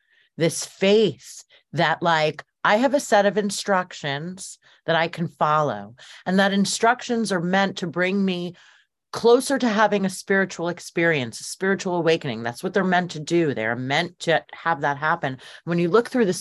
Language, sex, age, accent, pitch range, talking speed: English, female, 40-59, American, 160-215 Hz, 175 wpm